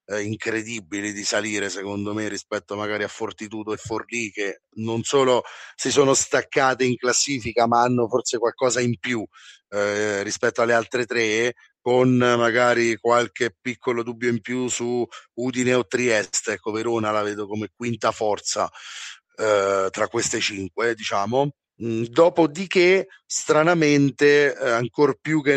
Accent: native